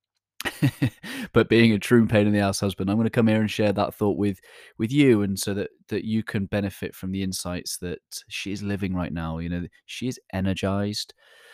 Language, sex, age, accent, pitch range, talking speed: English, male, 20-39, British, 95-115 Hz, 215 wpm